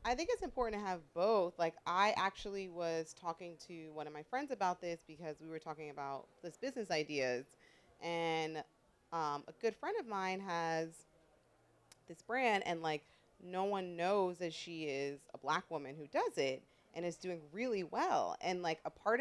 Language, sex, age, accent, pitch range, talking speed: English, female, 30-49, American, 160-190 Hz, 185 wpm